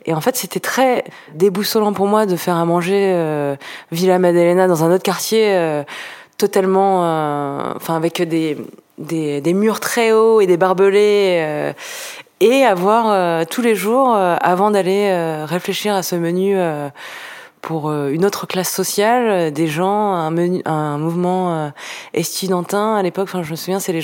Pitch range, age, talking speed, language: 165-210 Hz, 20-39, 175 wpm, French